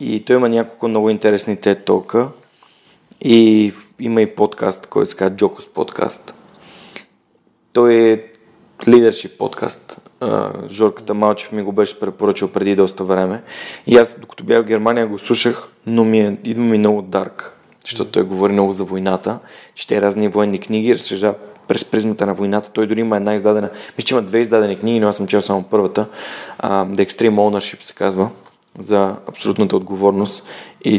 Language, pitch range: Bulgarian, 100-115 Hz